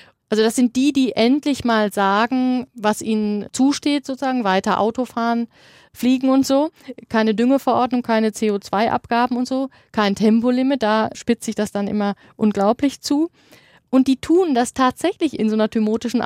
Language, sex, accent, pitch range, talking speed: German, female, German, 205-250 Hz, 155 wpm